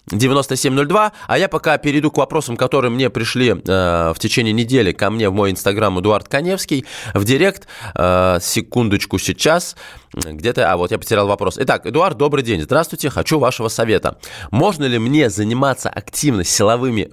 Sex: male